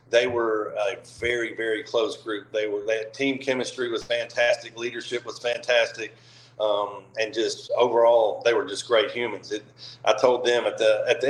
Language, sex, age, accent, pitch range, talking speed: English, male, 40-59, American, 115-130 Hz, 180 wpm